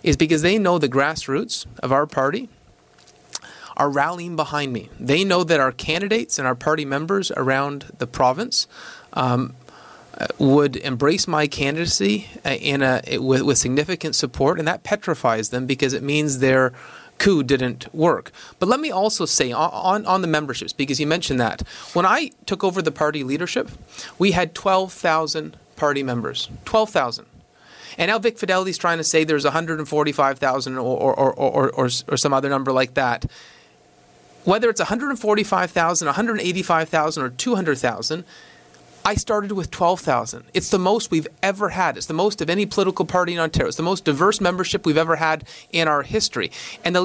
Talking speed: 160 wpm